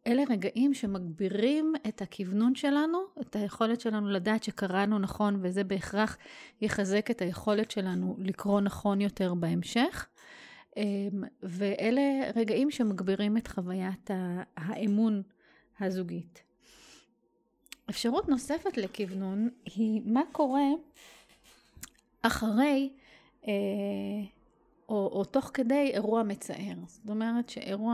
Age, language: 30-49, English